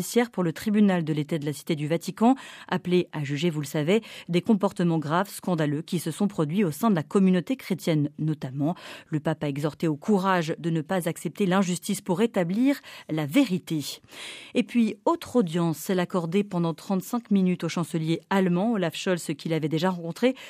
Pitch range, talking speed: 160-205 Hz, 185 wpm